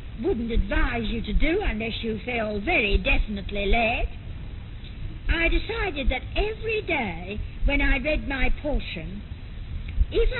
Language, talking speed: English, 125 wpm